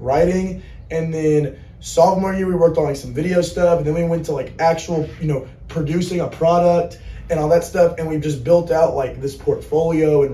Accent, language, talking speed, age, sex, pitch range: American, English, 215 wpm, 20-39, male, 145-170 Hz